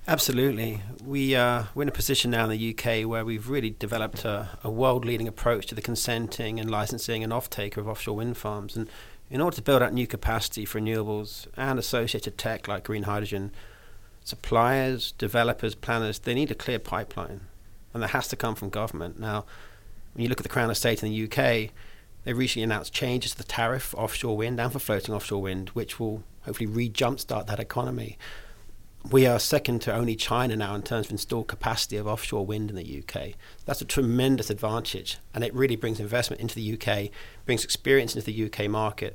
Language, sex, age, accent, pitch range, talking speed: English, male, 40-59, British, 105-120 Hz, 200 wpm